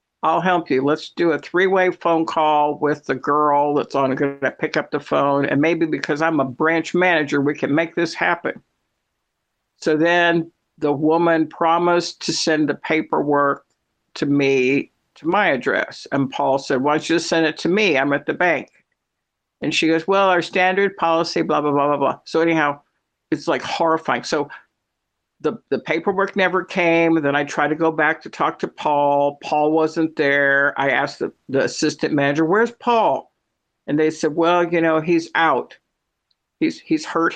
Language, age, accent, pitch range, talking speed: English, 60-79, American, 145-170 Hz, 185 wpm